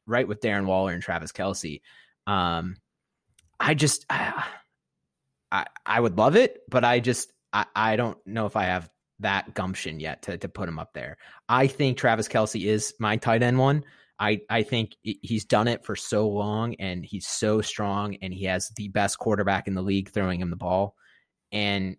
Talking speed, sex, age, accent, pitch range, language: 190 wpm, male, 30-49, American, 95-120 Hz, English